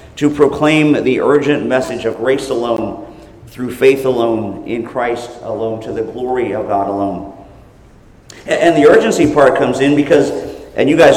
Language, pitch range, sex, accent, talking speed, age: English, 125-165 Hz, male, American, 160 wpm, 50-69